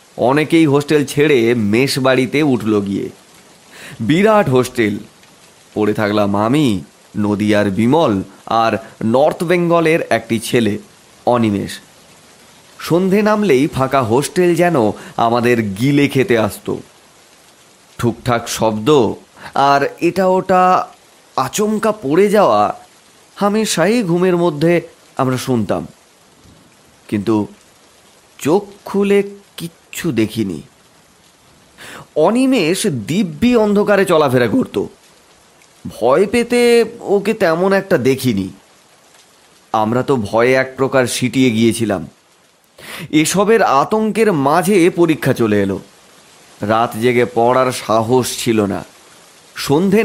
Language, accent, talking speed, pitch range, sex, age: Bengali, native, 90 wpm, 115-185 Hz, male, 30-49